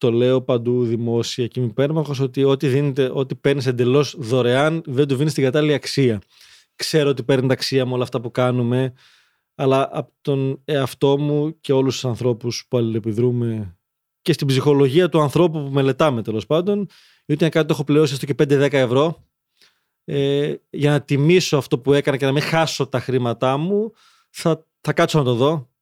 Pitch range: 125-150 Hz